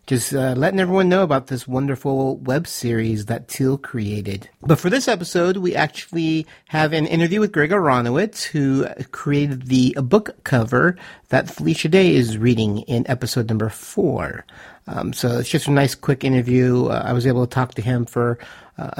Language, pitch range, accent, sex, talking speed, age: English, 125-160 Hz, American, male, 185 wpm, 50-69